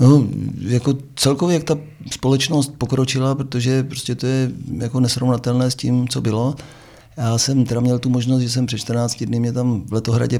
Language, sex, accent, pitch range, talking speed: Czech, male, native, 120-130 Hz, 185 wpm